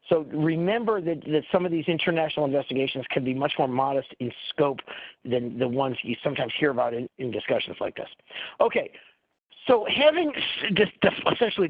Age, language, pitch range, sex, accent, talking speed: 50-69, English, 140-180 Hz, male, American, 165 wpm